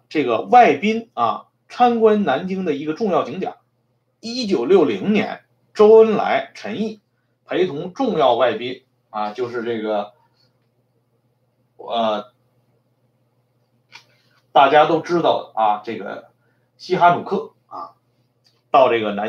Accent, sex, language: Chinese, male, Swedish